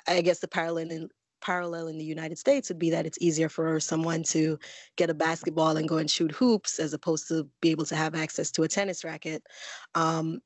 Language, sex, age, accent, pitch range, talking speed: English, female, 20-39, American, 155-170 Hz, 225 wpm